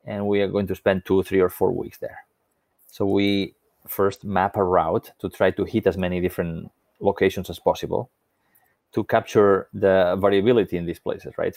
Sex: male